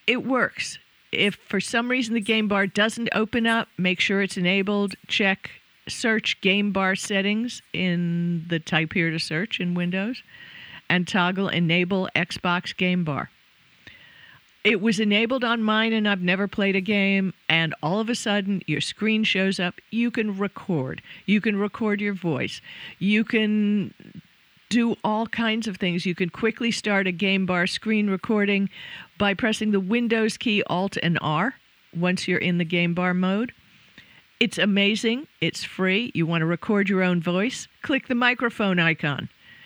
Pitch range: 180-220 Hz